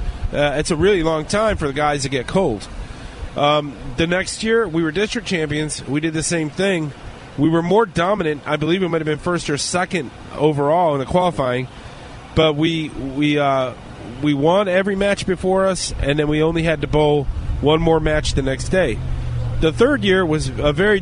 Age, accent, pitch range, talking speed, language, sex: 30-49, American, 140-185 Hz, 205 wpm, English, male